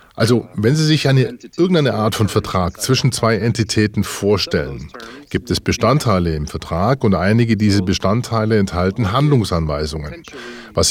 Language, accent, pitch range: German, German, 100-130 Hz